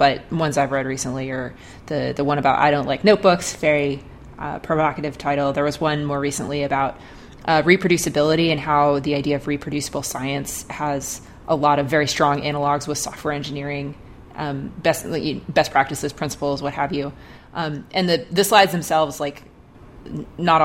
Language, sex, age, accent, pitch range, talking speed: English, female, 30-49, American, 140-160 Hz, 175 wpm